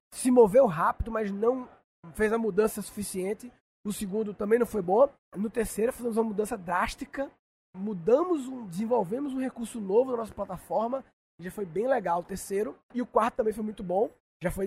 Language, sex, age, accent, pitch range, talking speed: Portuguese, male, 20-39, Brazilian, 195-240 Hz, 185 wpm